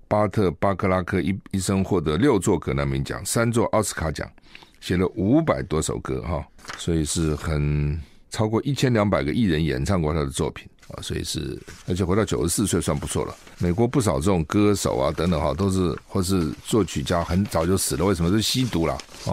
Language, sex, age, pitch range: Chinese, male, 50-69, 80-100 Hz